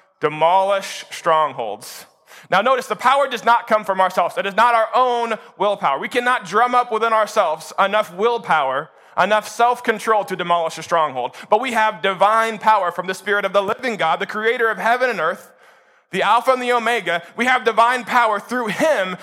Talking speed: 185 wpm